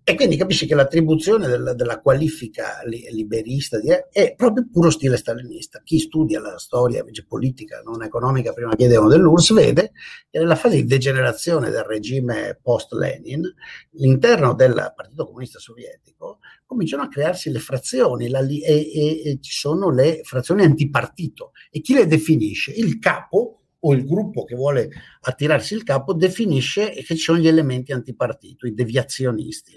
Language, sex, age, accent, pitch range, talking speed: Italian, male, 50-69, native, 120-165 Hz, 155 wpm